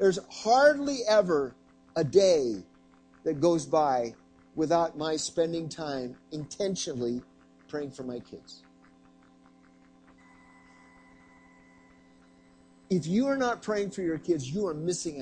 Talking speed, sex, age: 110 wpm, male, 50-69